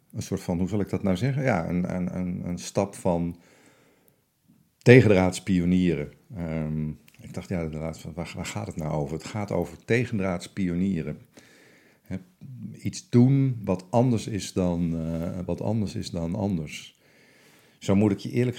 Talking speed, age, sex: 145 wpm, 50-69, male